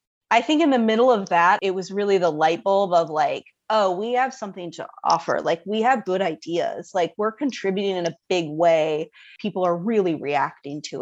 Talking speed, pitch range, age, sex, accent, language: 205 wpm, 170-210 Hz, 20-39, female, American, English